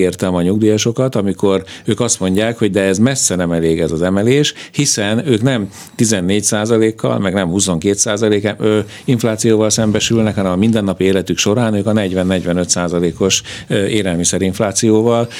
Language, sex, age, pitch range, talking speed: Hungarian, male, 50-69, 90-115 Hz, 145 wpm